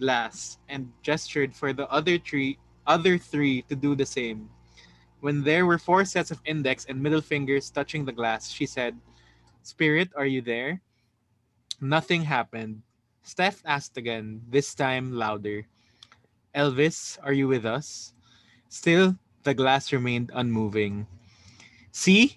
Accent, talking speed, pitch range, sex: Filipino, 135 wpm, 115-150 Hz, male